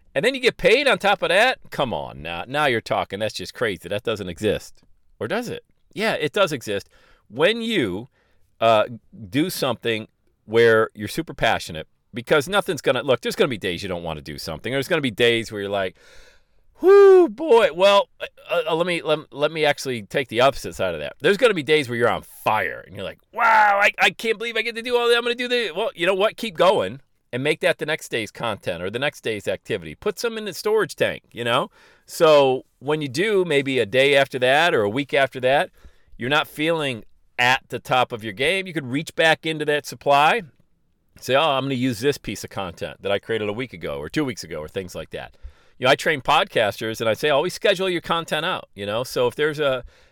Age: 40-59